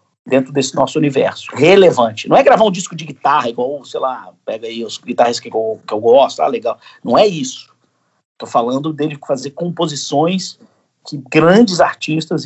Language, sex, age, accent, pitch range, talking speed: Portuguese, male, 50-69, Brazilian, 135-175 Hz, 175 wpm